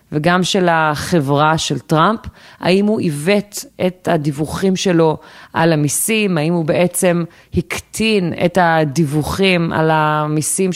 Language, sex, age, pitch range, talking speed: Hebrew, female, 30-49, 160-195 Hz, 115 wpm